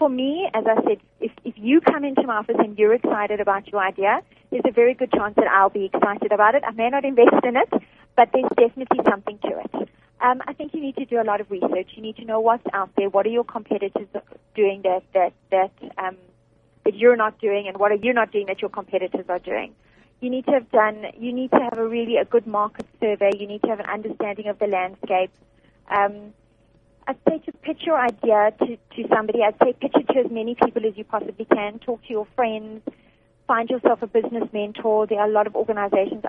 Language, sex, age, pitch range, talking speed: English, female, 30-49, 205-245 Hz, 240 wpm